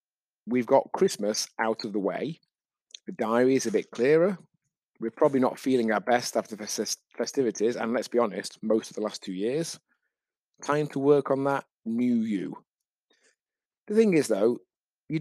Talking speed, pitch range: 175 wpm, 105-145 Hz